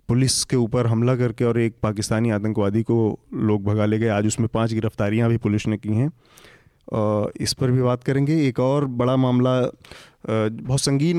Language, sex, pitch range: Hindi, male, 110-130 Hz